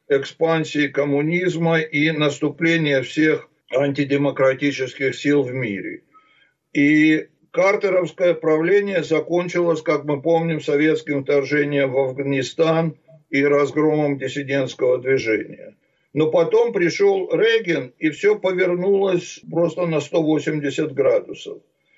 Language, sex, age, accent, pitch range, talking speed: Russian, male, 60-79, native, 150-185 Hz, 95 wpm